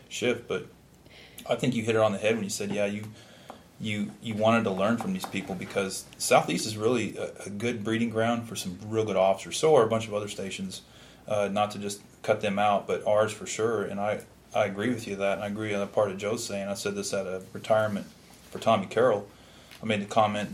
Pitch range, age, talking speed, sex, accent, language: 100-110 Hz, 30-49, 245 wpm, male, American, English